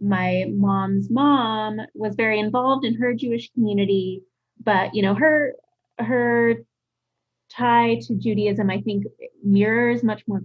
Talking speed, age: 130 wpm, 20-39